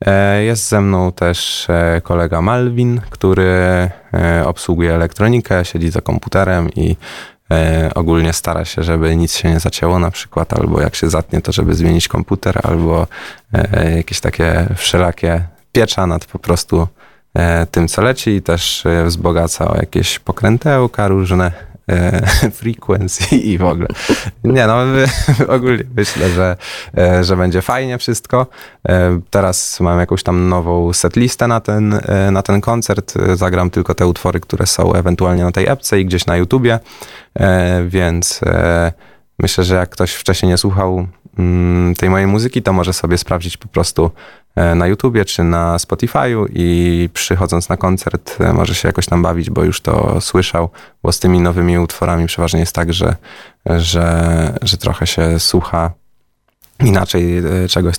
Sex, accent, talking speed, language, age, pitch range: male, native, 145 wpm, Polish, 20-39, 85-100 Hz